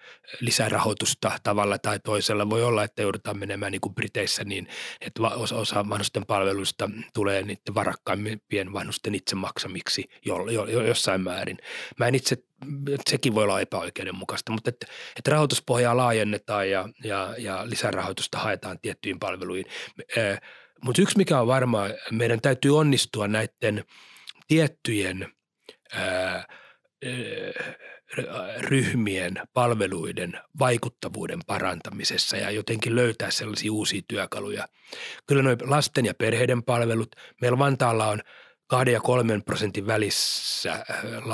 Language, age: Finnish, 30-49